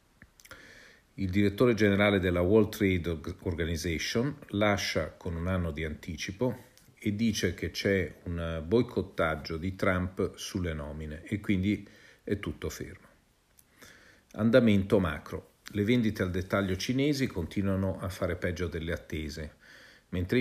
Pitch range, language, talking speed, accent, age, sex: 85-105 Hz, Italian, 125 wpm, native, 50-69, male